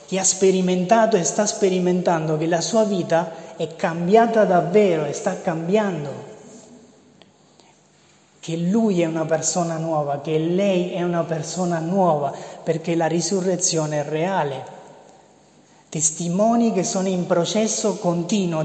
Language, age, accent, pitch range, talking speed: Italian, 30-49, native, 165-200 Hz, 125 wpm